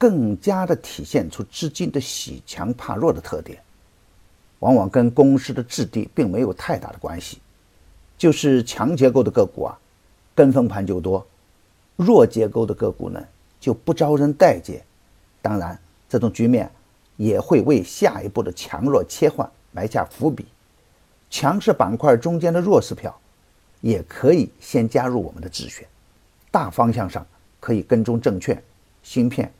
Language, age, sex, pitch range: Chinese, 50-69, male, 95-140 Hz